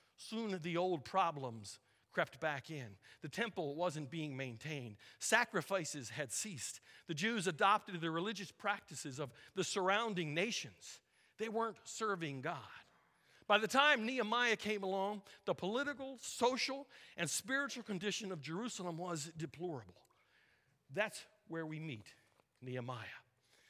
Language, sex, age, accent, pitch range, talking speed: English, male, 50-69, American, 155-215 Hz, 125 wpm